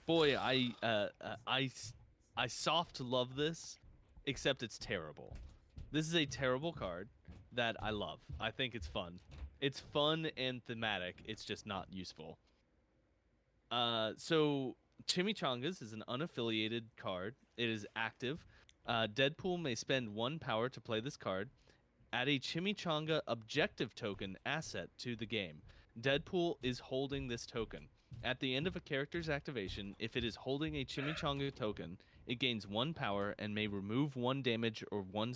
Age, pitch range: 20-39, 105-140 Hz